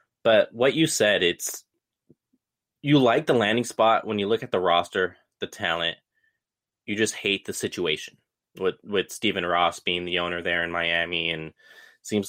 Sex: male